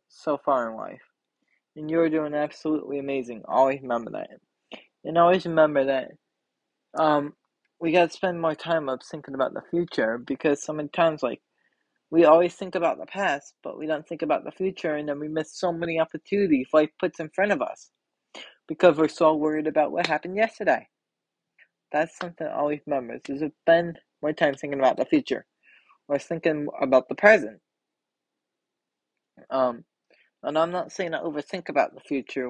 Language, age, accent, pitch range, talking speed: English, 20-39, American, 140-170 Hz, 175 wpm